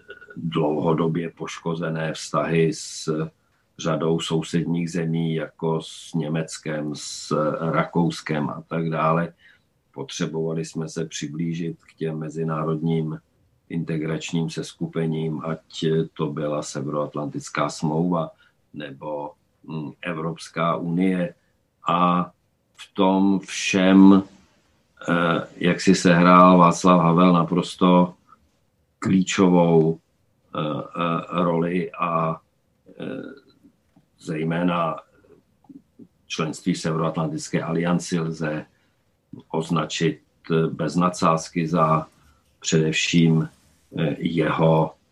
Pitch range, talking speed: 80-85 Hz, 75 wpm